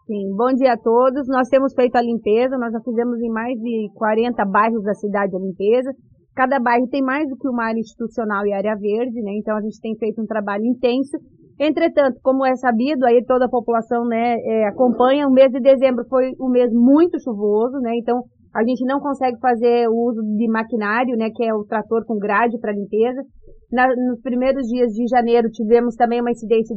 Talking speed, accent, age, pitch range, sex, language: 210 wpm, Brazilian, 30-49, 235-270 Hz, female, Portuguese